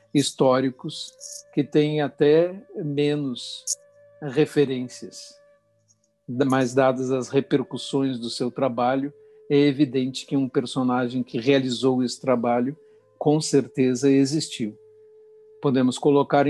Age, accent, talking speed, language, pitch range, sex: 60-79, Brazilian, 100 wpm, Portuguese, 125-155 Hz, male